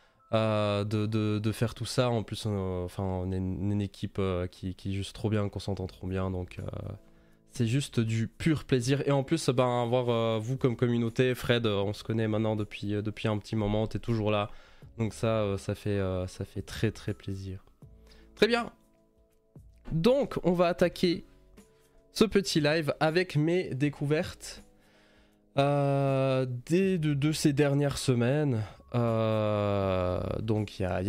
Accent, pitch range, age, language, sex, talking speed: French, 105-140 Hz, 20-39, French, male, 175 wpm